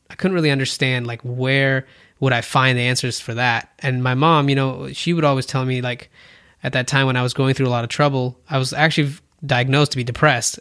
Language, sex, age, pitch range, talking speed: English, male, 20-39, 120-140 Hz, 245 wpm